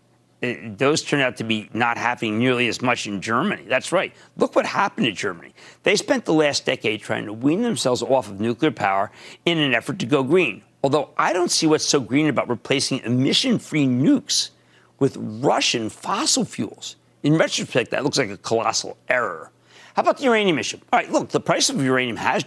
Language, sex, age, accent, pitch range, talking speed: English, male, 50-69, American, 125-185 Hz, 200 wpm